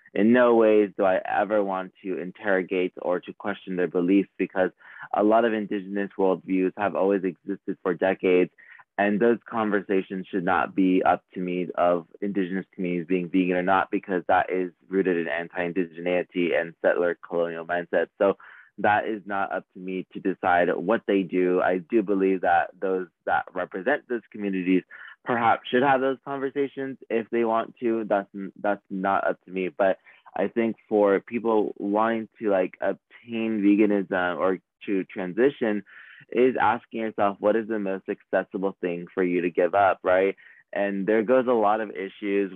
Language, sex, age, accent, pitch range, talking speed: English, male, 20-39, American, 90-110 Hz, 170 wpm